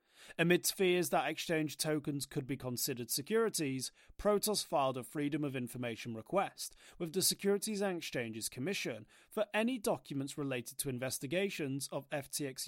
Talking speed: 140 wpm